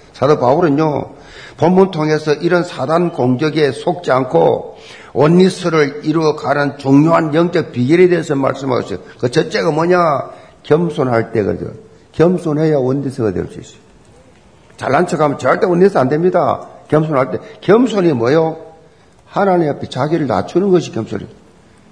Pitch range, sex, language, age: 145-175 Hz, male, Korean, 50-69